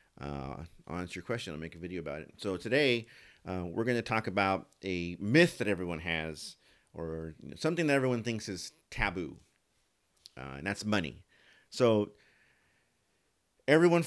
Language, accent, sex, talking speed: English, American, male, 160 wpm